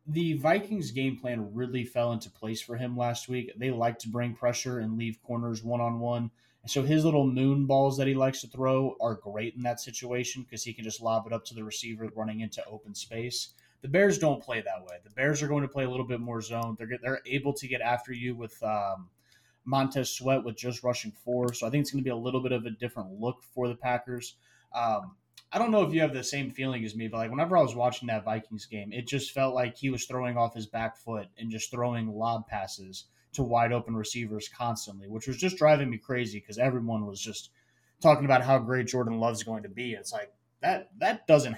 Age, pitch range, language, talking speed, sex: 20-39, 110-130 Hz, English, 240 wpm, male